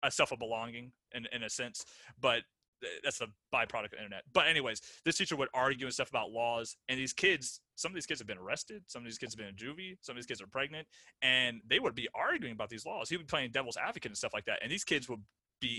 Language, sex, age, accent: English, male, 30-49, American